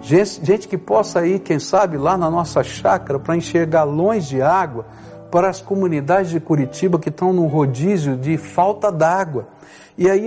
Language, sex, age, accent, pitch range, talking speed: Portuguese, male, 60-79, Brazilian, 160-220 Hz, 175 wpm